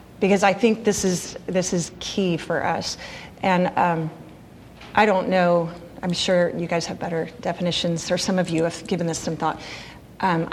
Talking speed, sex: 180 wpm, female